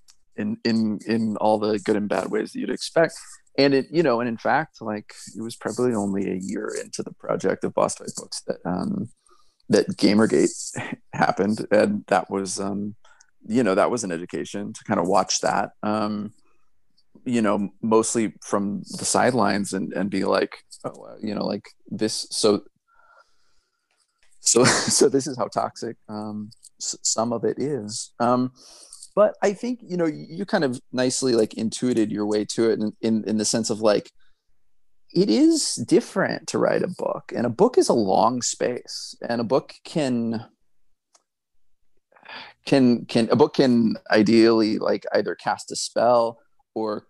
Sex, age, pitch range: male, 30-49, 105-140 Hz